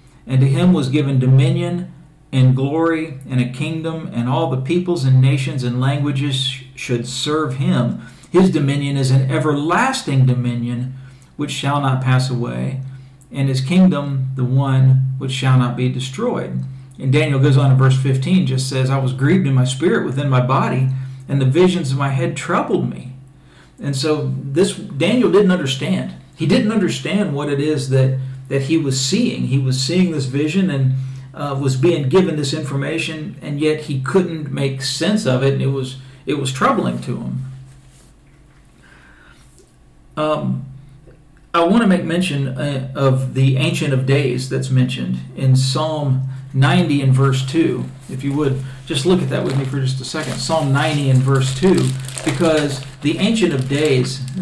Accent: American